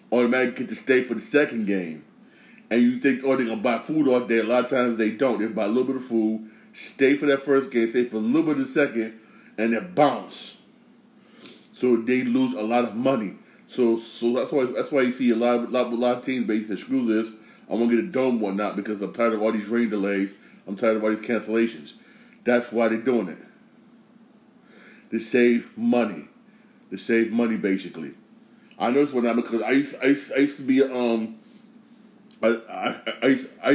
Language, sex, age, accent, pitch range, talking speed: English, male, 30-49, American, 115-140 Hz, 205 wpm